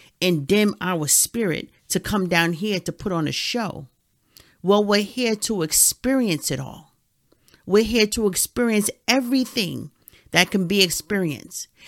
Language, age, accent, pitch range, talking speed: English, 40-59, American, 160-215 Hz, 145 wpm